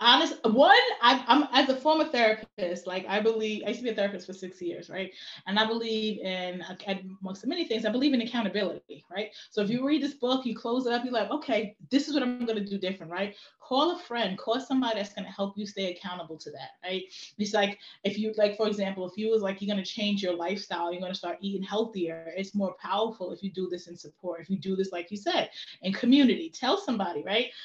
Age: 20-39